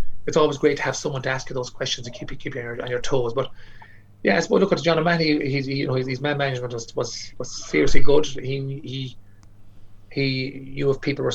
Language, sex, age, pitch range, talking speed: English, male, 30-49, 120-140 Hz, 235 wpm